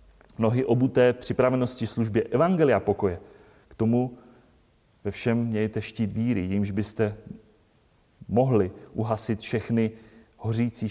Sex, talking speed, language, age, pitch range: male, 105 wpm, Czech, 30-49, 100-125 Hz